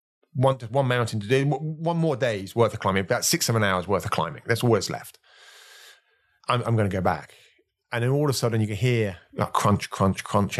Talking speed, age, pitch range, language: 230 wpm, 30-49, 95-140 Hz, English